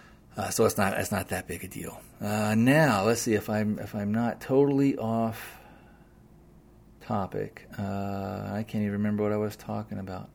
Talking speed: 185 wpm